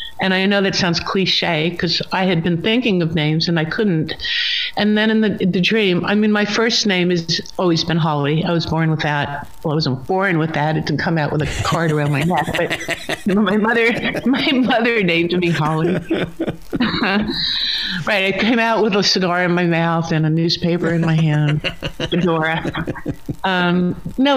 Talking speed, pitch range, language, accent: 195 wpm, 165-210 Hz, English, American